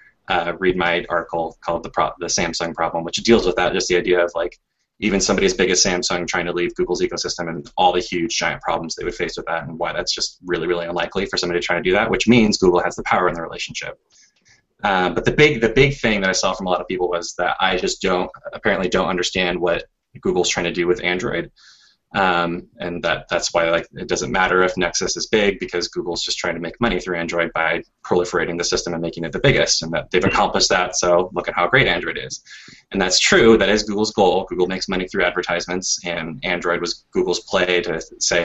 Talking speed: 245 wpm